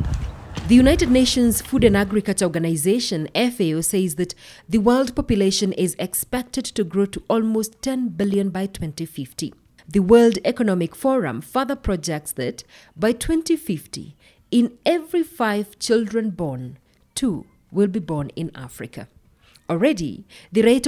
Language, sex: English, female